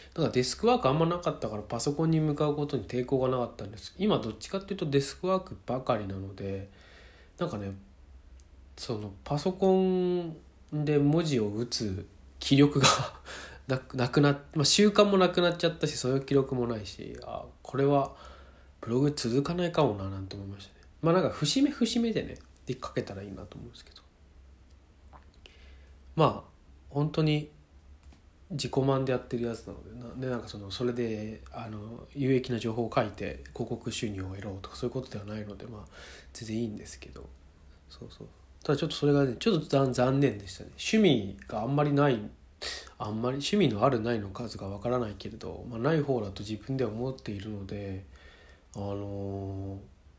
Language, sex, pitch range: Japanese, male, 90-140 Hz